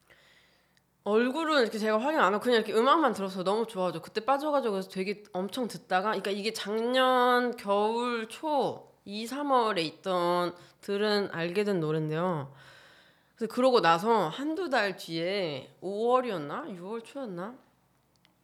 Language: Korean